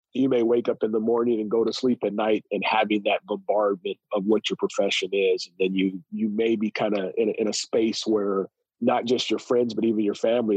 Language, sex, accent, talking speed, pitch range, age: English, male, American, 245 wpm, 100-120 Hz, 40-59